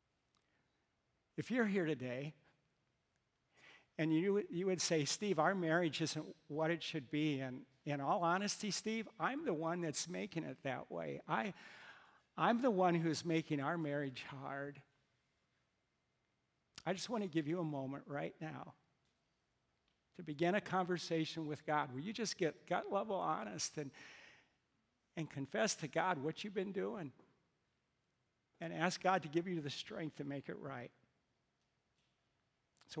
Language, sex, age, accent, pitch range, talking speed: English, male, 60-79, American, 145-180 Hz, 150 wpm